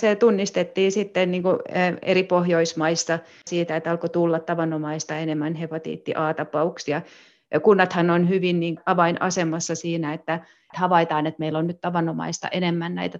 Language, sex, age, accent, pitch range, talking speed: Finnish, female, 30-49, native, 155-170 Hz, 135 wpm